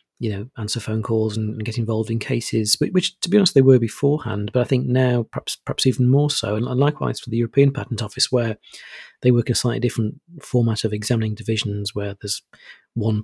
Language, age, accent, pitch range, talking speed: English, 40-59, British, 110-135 Hz, 220 wpm